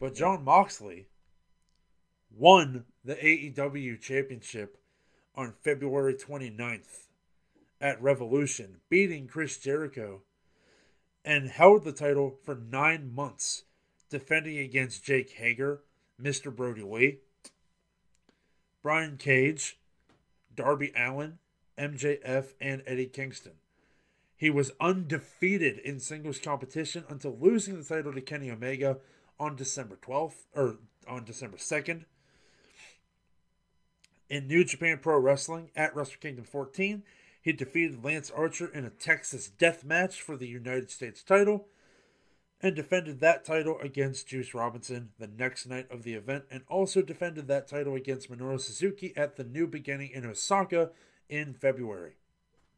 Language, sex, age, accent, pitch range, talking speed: English, male, 30-49, American, 130-160 Hz, 125 wpm